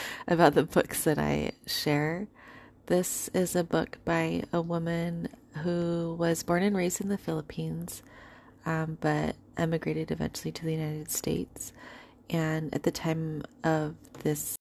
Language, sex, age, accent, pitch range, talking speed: English, female, 30-49, American, 150-175 Hz, 145 wpm